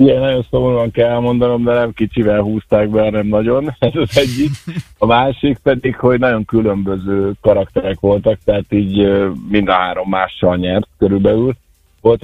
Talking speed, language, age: 155 wpm, Hungarian, 50-69